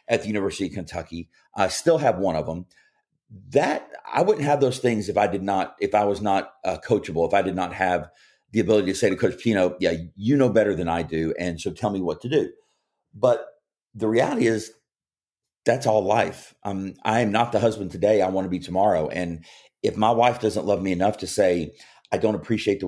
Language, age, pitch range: English, 40-59, 90-120 Hz